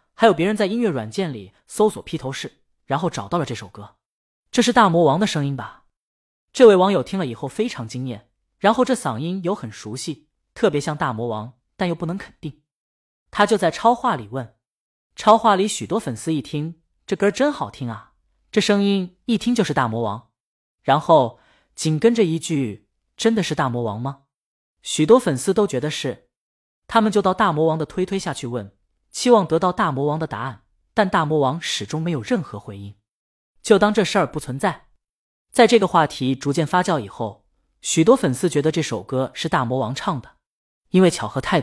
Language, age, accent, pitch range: Chinese, 20-39, native, 125-195 Hz